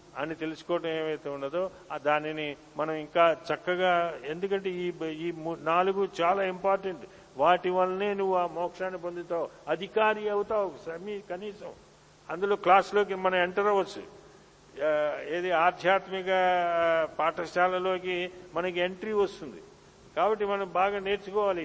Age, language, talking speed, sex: 50-69, Telugu, 105 wpm, male